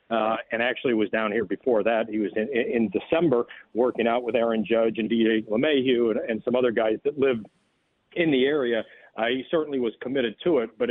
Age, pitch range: 50-69, 115-135 Hz